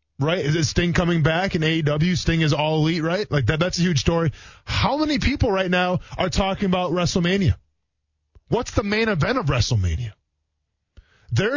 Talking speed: 175 wpm